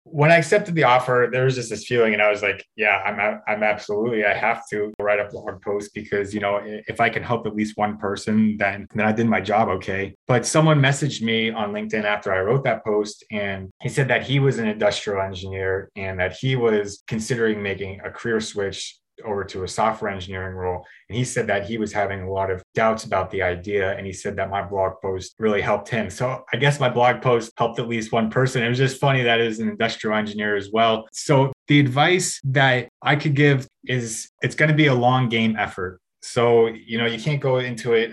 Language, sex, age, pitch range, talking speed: English, male, 20-39, 100-125 Hz, 230 wpm